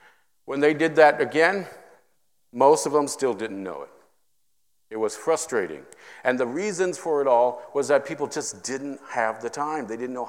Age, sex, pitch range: 50-69, male, 125-175 Hz